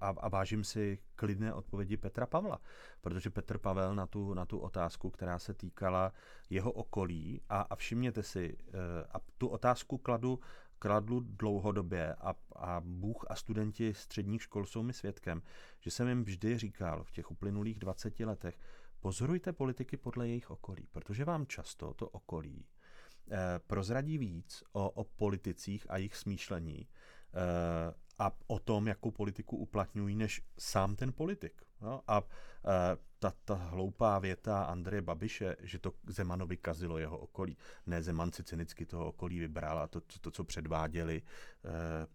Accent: native